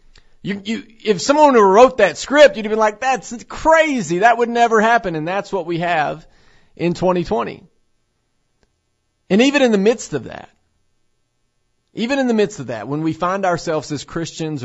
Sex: male